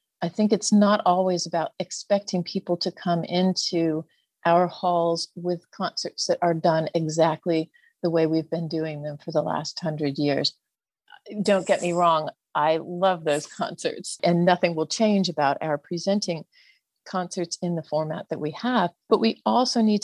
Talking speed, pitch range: 170 wpm, 170-210 Hz